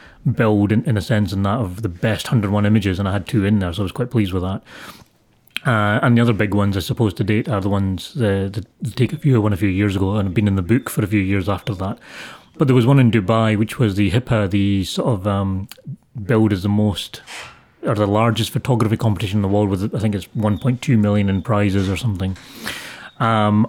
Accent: British